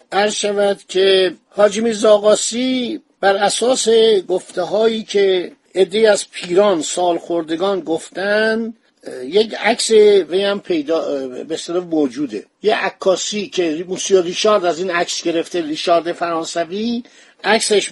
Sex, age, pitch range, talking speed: male, 50-69, 180-220 Hz, 115 wpm